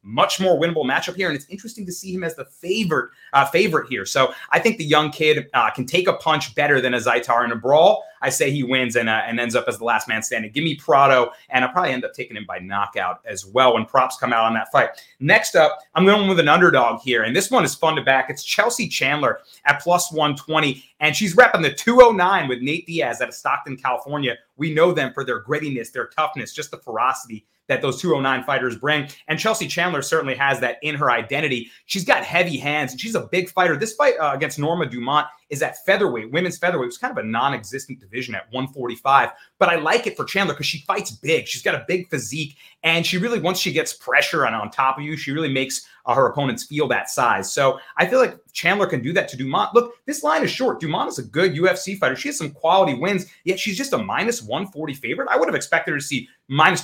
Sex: male